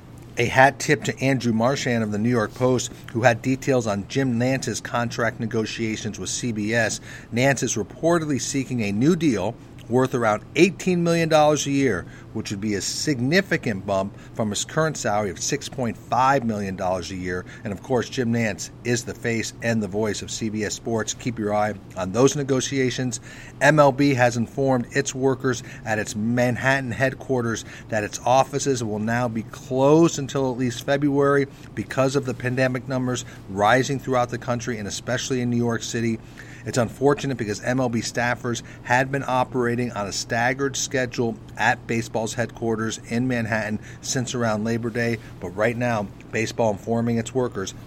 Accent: American